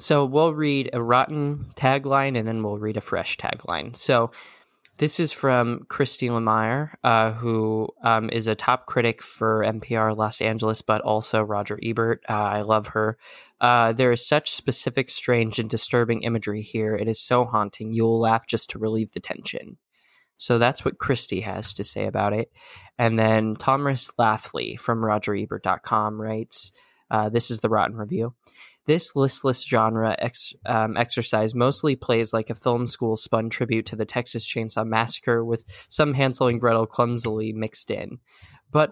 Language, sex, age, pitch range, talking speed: English, male, 20-39, 110-130 Hz, 165 wpm